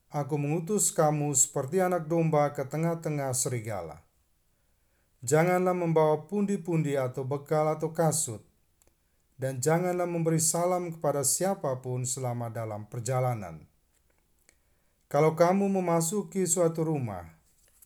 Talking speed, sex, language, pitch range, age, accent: 100 wpm, male, Indonesian, 105-170 Hz, 40-59, native